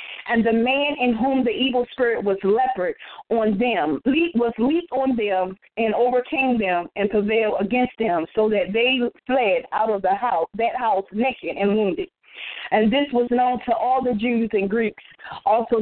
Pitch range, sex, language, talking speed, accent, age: 200-250 Hz, female, English, 180 wpm, American, 40-59